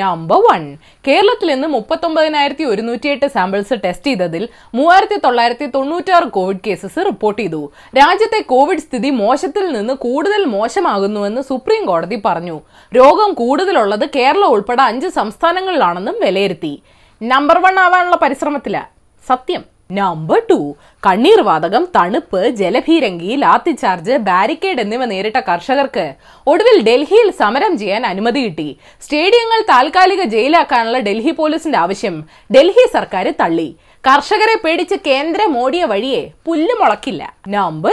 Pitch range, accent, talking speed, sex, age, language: 215-340 Hz, native, 105 wpm, female, 20-39, Malayalam